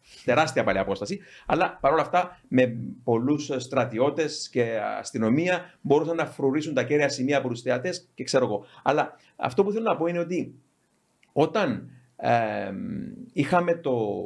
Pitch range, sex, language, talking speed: 105-150 Hz, male, Greek, 135 wpm